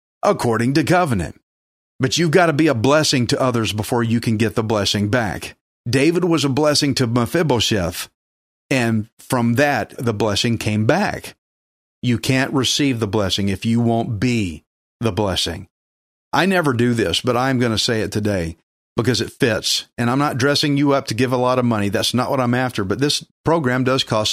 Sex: male